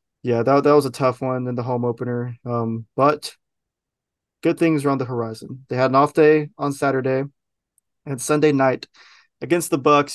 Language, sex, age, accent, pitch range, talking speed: English, male, 20-39, American, 125-145 Hz, 190 wpm